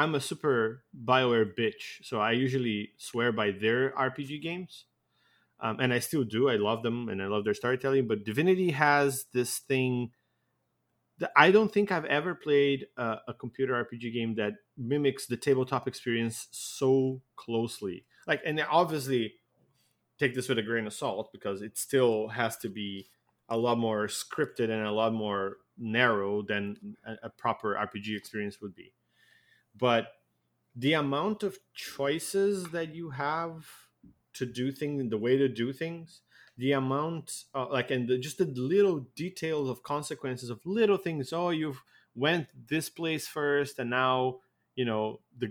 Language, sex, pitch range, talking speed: English, male, 110-145 Hz, 165 wpm